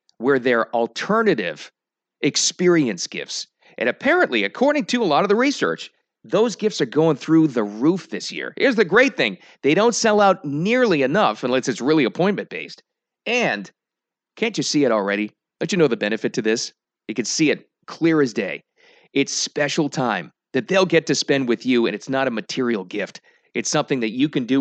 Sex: male